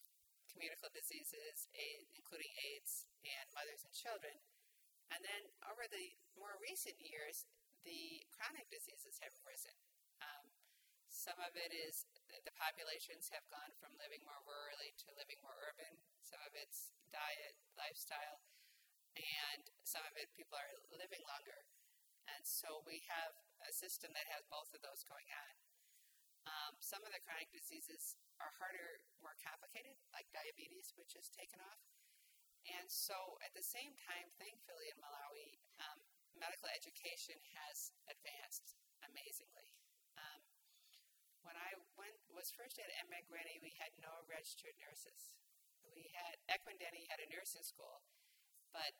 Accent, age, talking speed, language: American, 40-59, 145 wpm, English